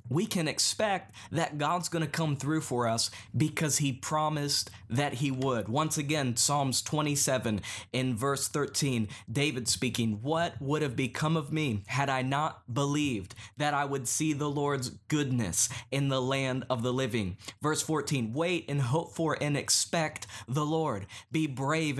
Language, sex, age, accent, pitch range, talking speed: English, male, 20-39, American, 120-155 Hz, 165 wpm